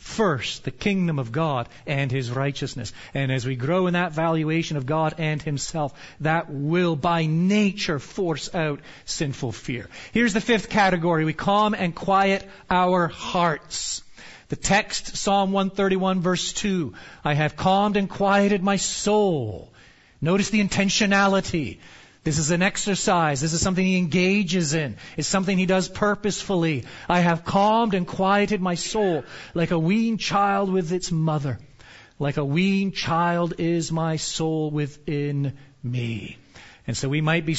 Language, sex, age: English, male, 40-59